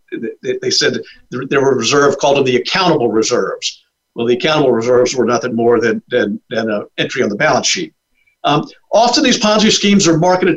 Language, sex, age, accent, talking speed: English, male, 50-69, American, 185 wpm